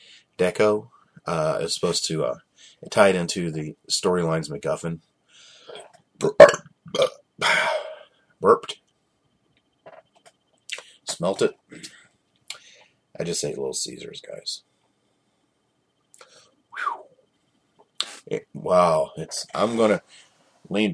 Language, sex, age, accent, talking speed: English, male, 30-49, American, 90 wpm